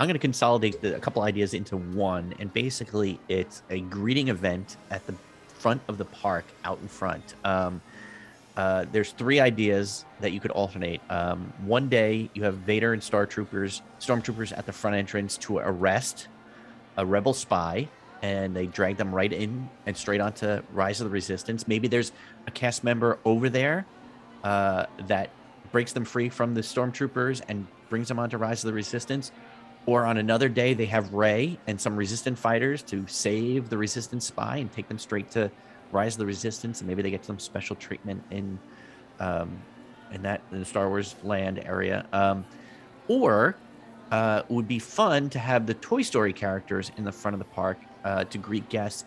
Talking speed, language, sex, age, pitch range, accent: 185 wpm, English, male, 30-49, 100-120 Hz, American